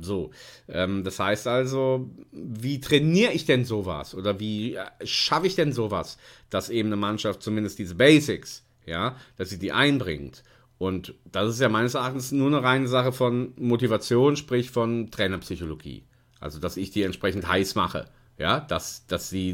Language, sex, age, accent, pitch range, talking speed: German, male, 40-59, German, 105-140 Hz, 165 wpm